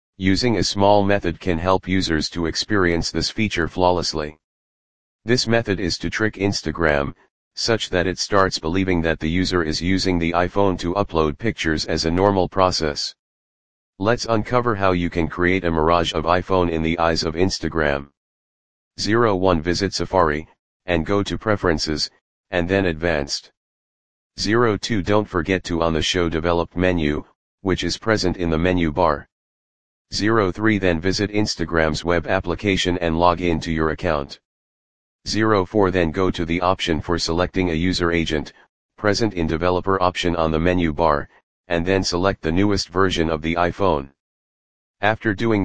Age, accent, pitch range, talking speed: 40-59, American, 80-95 Hz, 160 wpm